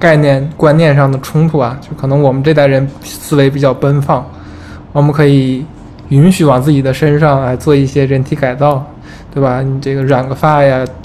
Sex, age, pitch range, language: male, 20-39, 135-150 Hz, Chinese